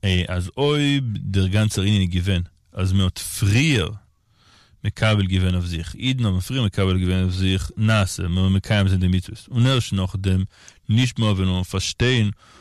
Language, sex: Hebrew, male